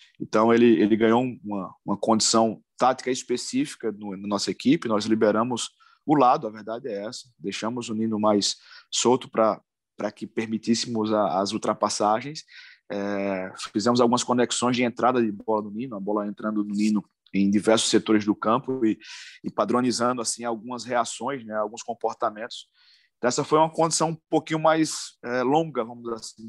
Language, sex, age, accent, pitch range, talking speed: Portuguese, male, 20-39, Brazilian, 105-130 Hz, 170 wpm